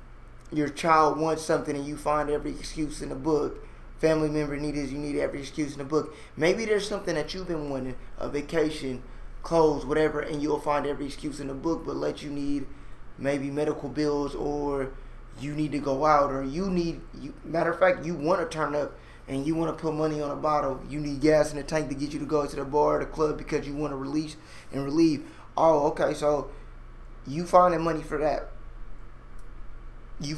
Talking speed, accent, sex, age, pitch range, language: 210 wpm, American, male, 20-39, 140-155 Hz, English